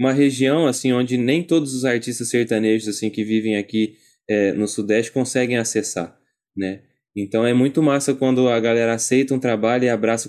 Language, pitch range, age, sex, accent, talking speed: Portuguese, 110-130 Hz, 20-39, male, Brazilian, 165 wpm